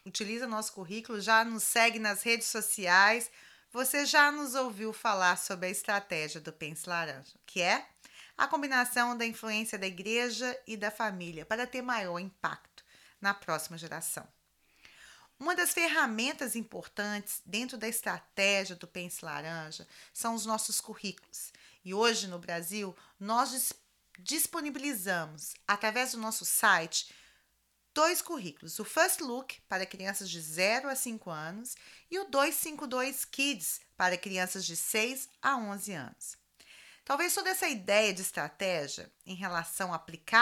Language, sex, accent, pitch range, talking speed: Portuguese, female, Brazilian, 190-250 Hz, 140 wpm